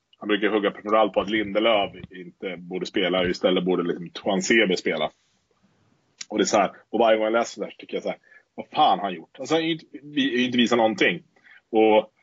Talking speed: 205 wpm